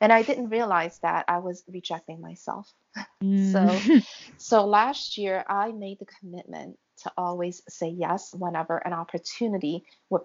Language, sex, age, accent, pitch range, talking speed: English, female, 40-59, American, 170-205 Hz, 145 wpm